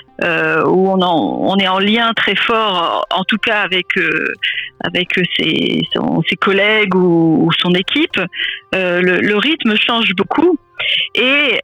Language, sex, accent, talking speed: French, female, French, 145 wpm